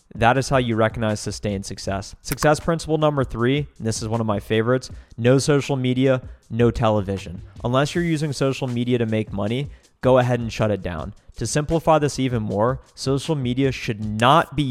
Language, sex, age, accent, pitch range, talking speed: English, male, 30-49, American, 110-135 Hz, 190 wpm